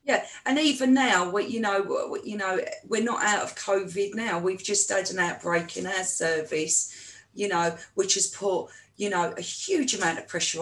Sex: female